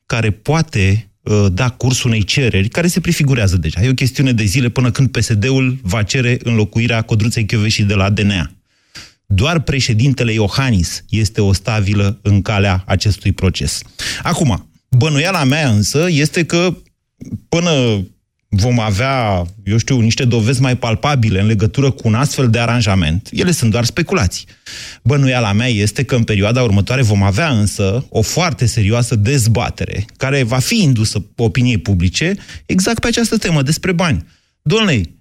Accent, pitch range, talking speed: native, 105-140 Hz, 155 wpm